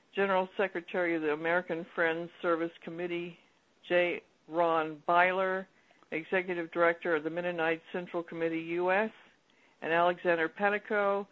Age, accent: 60-79, American